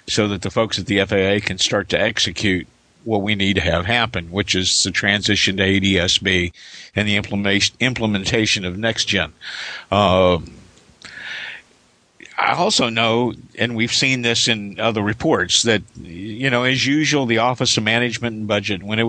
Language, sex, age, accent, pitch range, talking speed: English, male, 50-69, American, 100-115 Hz, 160 wpm